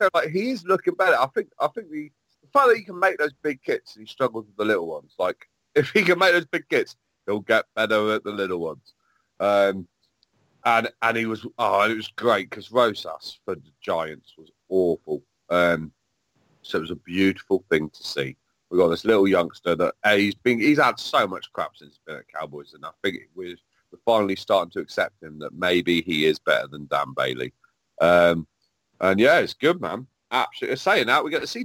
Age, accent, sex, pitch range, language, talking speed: 40-59, British, male, 100-150 Hz, English, 215 wpm